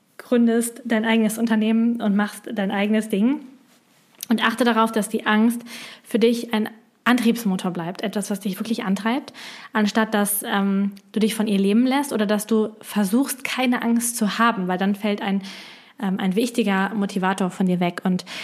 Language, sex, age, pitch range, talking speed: German, female, 20-39, 200-235 Hz, 175 wpm